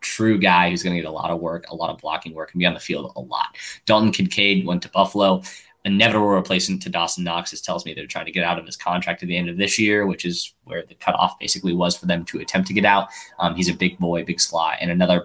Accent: American